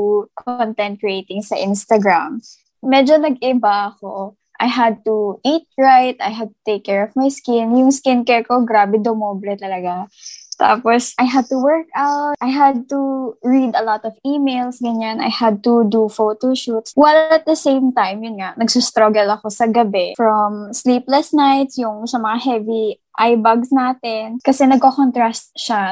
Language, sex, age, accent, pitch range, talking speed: Filipino, female, 20-39, native, 210-260 Hz, 165 wpm